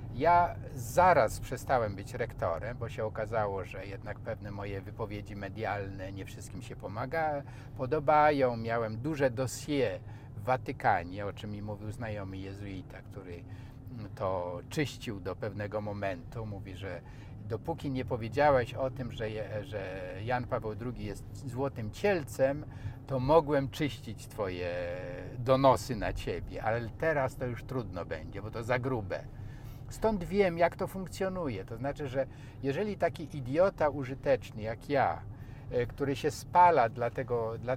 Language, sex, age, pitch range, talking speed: Polish, male, 50-69, 105-135 Hz, 140 wpm